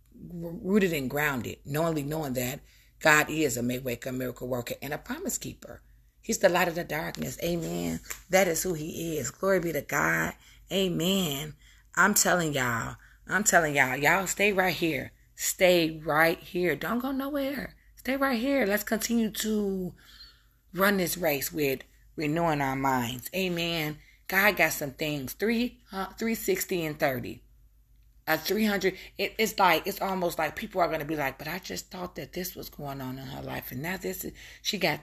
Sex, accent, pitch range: female, American, 150-190 Hz